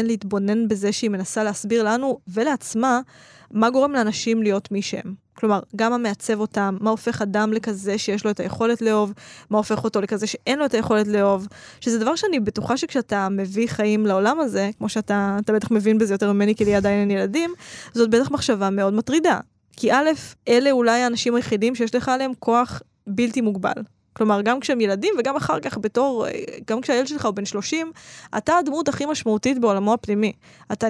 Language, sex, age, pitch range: Hebrew, female, 10-29, 210-245 Hz